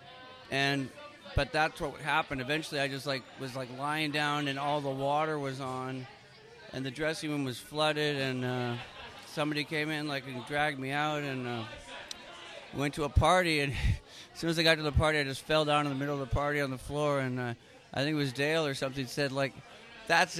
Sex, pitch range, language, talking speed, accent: male, 135-160 Hz, English, 220 wpm, American